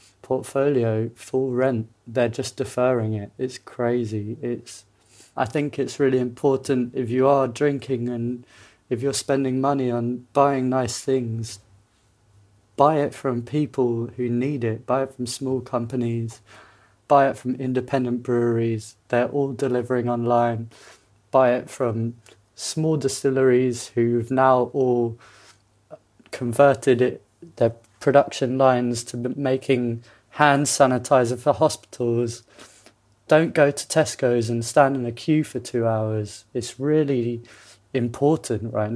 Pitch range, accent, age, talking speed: 115-135 Hz, British, 30-49, 130 wpm